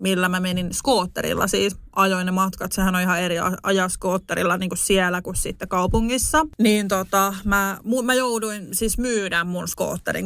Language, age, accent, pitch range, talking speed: Finnish, 30-49, native, 185-230 Hz, 170 wpm